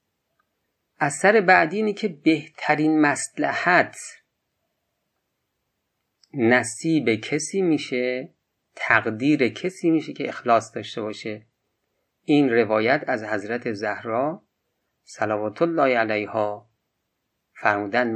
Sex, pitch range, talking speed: male, 110-150 Hz, 85 wpm